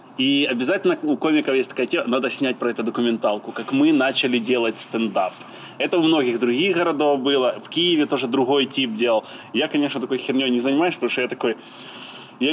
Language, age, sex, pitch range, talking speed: Ukrainian, 20-39, male, 120-170 Hz, 190 wpm